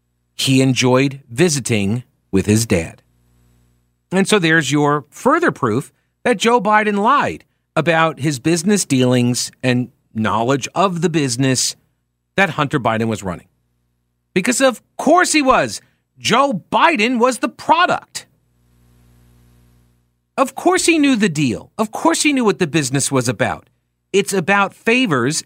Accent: American